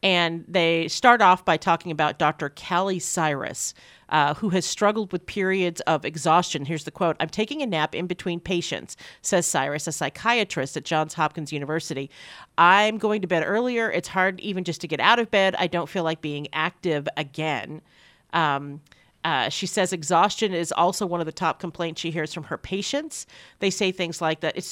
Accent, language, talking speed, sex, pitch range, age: American, English, 195 wpm, female, 160-195 Hz, 40-59